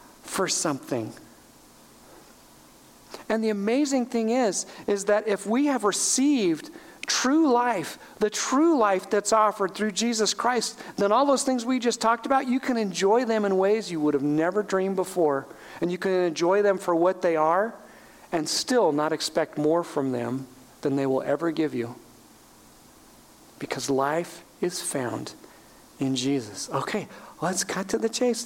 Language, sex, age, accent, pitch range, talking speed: English, male, 50-69, American, 180-255 Hz, 160 wpm